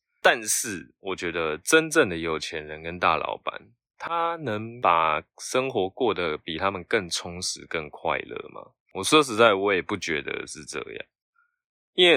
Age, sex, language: 20-39, male, Chinese